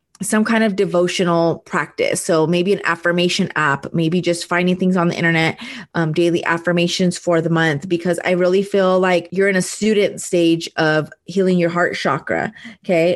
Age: 20-39